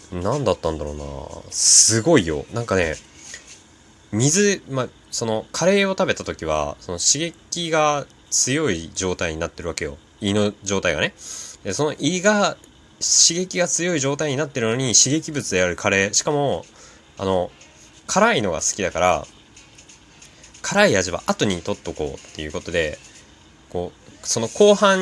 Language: Japanese